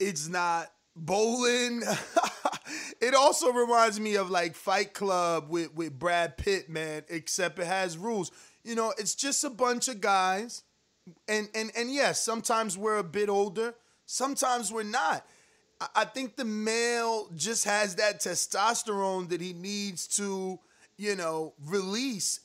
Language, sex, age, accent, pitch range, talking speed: English, male, 30-49, American, 185-230 Hz, 145 wpm